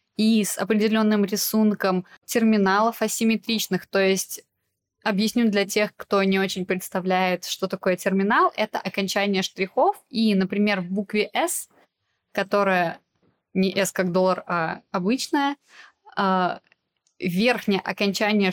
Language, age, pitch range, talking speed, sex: Russian, 20-39, 195-235 Hz, 115 wpm, female